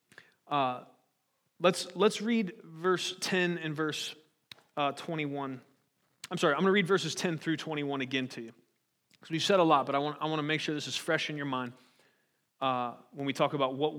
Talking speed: 210 wpm